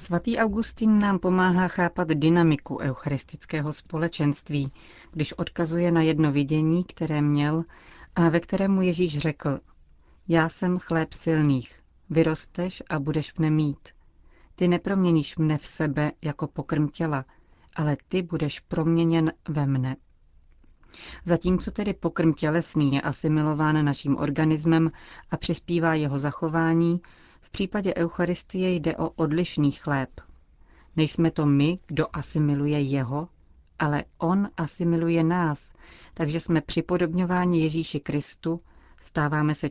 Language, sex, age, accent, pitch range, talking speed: Czech, female, 40-59, native, 145-170 Hz, 120 wpm